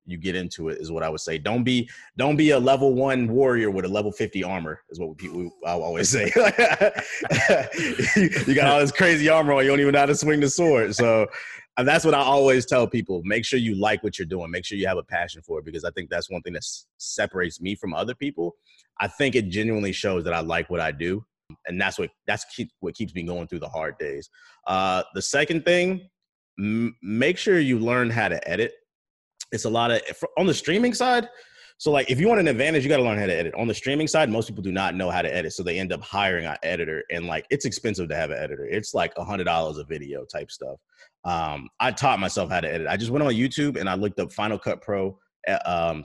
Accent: American